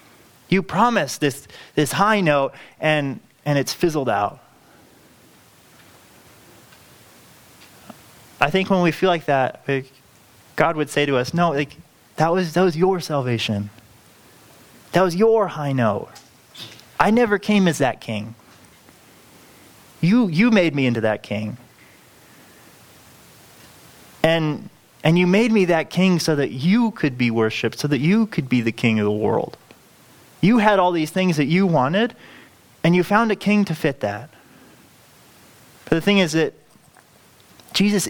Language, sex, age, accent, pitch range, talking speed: English, male, 20-39, American, 130-185 Hz, 150 wpm